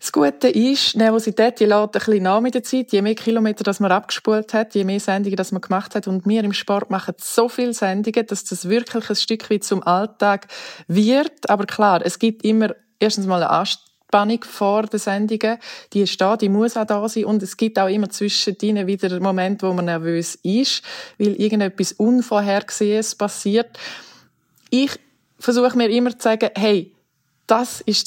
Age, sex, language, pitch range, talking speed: 20-39, female, German, 195-225 Hz, 190 wpm